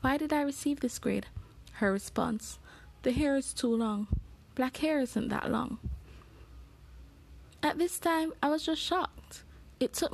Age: 20-39